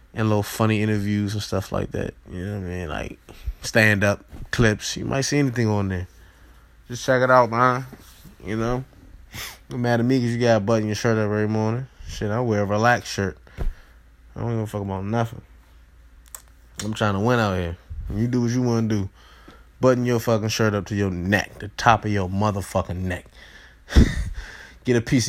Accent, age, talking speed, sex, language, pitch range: American, 20-39, 200 wpm, male, English, 95-120 Hz